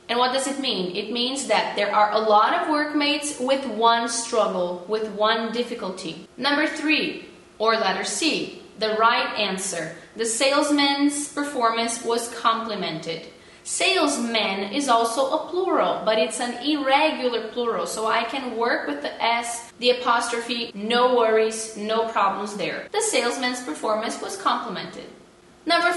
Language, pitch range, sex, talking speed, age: English, 210-260 Hz, female, 145 wpm, 10-29